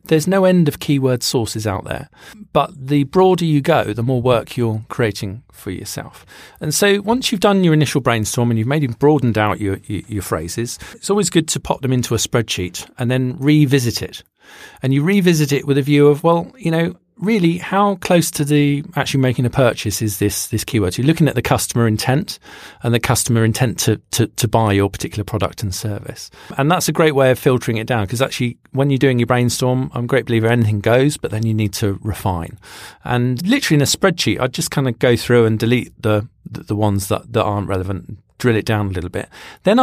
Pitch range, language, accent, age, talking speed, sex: 110-155 Hz, English, British, 40-59, 225 wpm, male